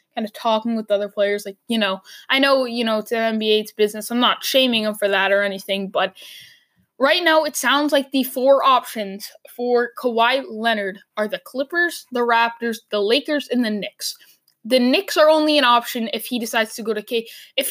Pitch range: 225-290 Hz